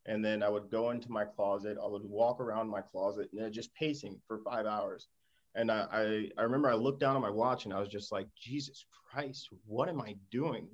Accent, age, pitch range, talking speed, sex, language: American, 30-49, 105-120 Hz, 235 wpm, male, English